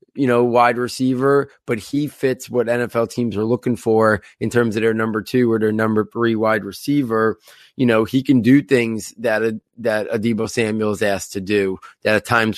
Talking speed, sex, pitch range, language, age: 205 wpm, male, 110-125 Hz, English, 30-49